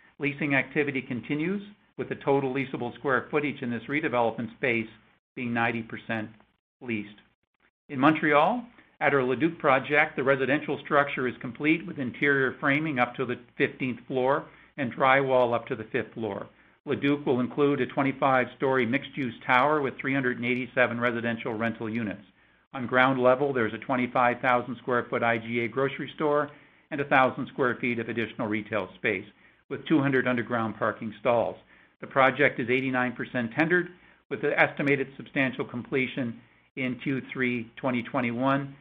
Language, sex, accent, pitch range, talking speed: English, male, American, 120-145 Hz, 140 wpm